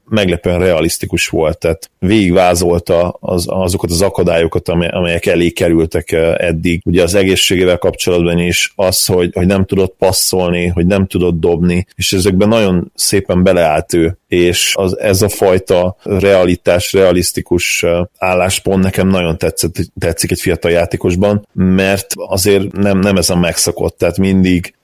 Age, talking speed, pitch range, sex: 30-49, 140 wpm, 85-95 Hz, male